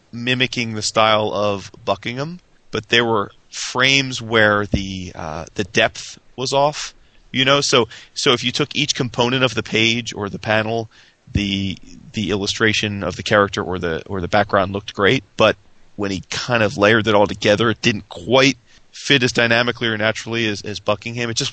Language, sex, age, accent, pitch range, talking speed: English, male, 30-49, American, 95-115 Hz, 185 wpm